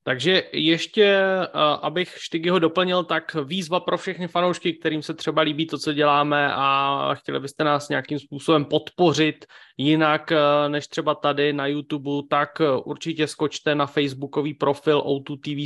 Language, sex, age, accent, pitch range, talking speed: Czech, male, 20-39, native, 140-180 Hz, 145 wpm